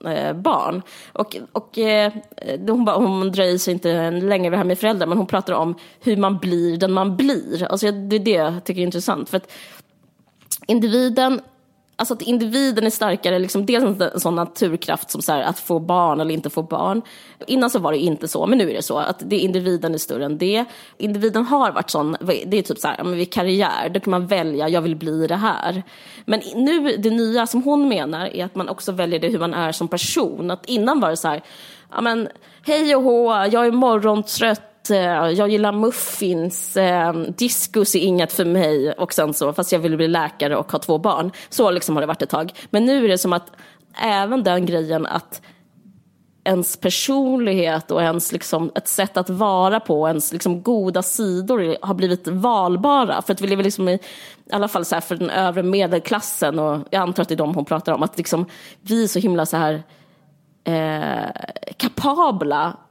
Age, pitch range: 20-39, 170-220 Hz